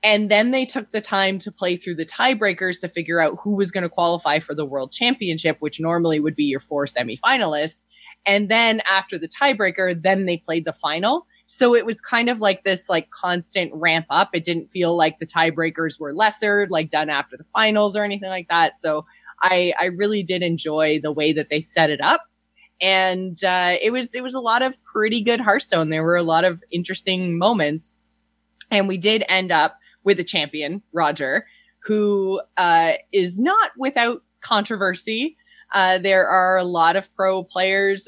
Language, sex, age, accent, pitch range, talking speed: English, female, 20-39, American, 160-205 Hz, 195 wpm